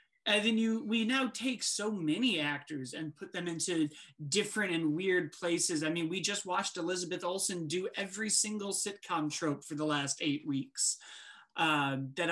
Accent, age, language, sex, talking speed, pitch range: American, 30-49, English, male, 180 wpm, 150-215 Hz